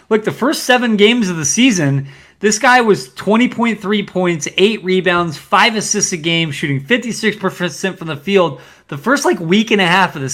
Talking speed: 190 wpm